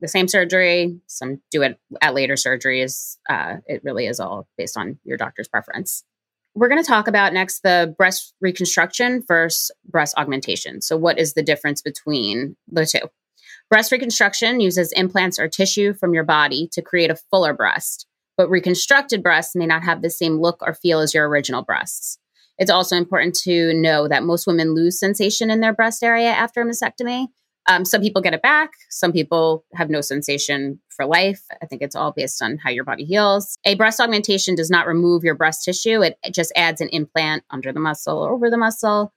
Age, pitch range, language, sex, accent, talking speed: 30-49, 160-200 Hz, English, female, American, 200 wpm